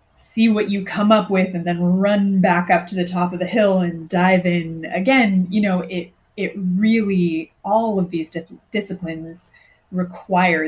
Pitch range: 170-210 Hz